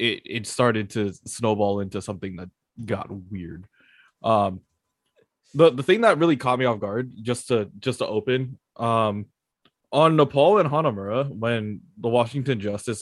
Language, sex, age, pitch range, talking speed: English, male, 20-39, 105-130 Hz, 155 wpm